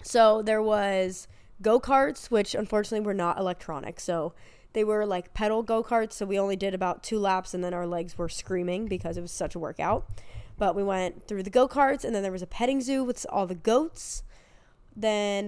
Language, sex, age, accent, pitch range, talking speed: English, female, 20-39, American, 185-230 Hz, 200 wpm